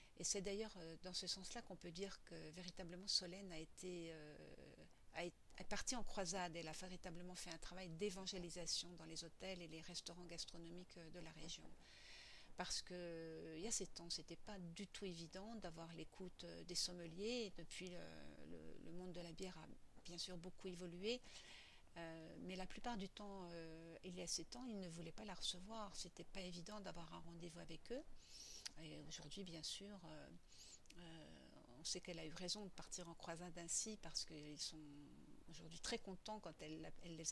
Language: French